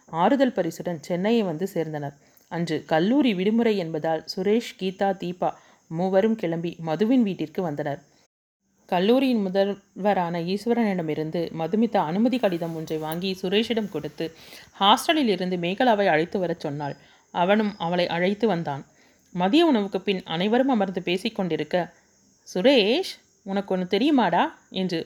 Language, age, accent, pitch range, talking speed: Tamil, 30-49, native, 165-215 Hz, 115 wpm